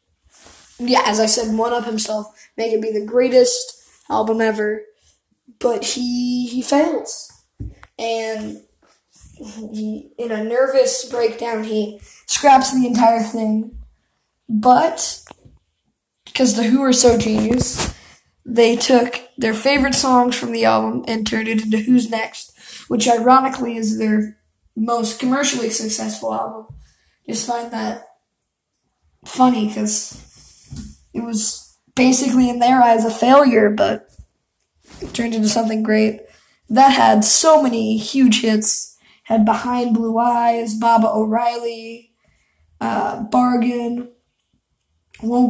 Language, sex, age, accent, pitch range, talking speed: English, female, 10-29, American, 220-250 Hz, 125 wpm